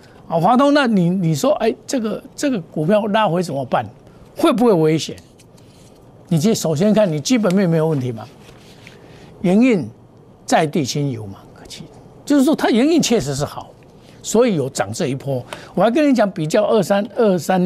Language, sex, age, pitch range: Chinese, male, 60-79, 140-210 Hz